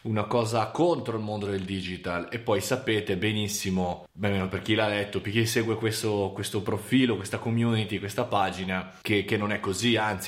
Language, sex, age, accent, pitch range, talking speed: Italian, male, 20-39, native, 100-130 Hz, 195 wpm